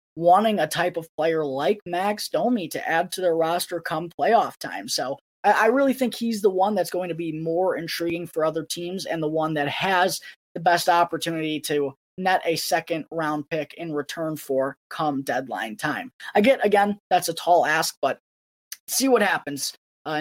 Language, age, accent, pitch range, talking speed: English, 20-39, American, 160-205 Hz, 190 wpm